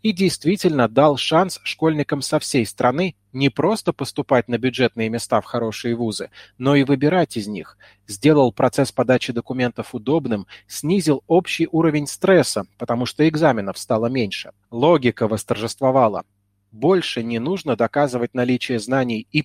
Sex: male